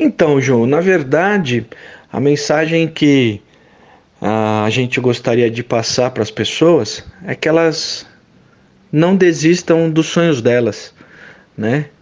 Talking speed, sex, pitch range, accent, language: 120 wpm, male, 120-150 Hz, Brazilian, Portuguese